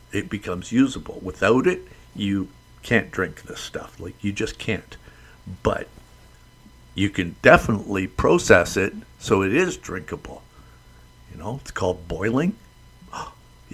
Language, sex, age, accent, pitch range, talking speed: English, male, 50-69, American, 90-115 Hz, 130 wpm